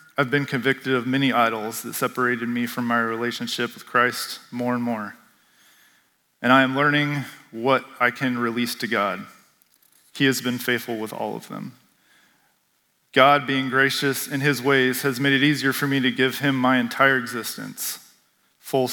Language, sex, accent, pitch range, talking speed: English, male, American, 125-145 Hz, 170 wpm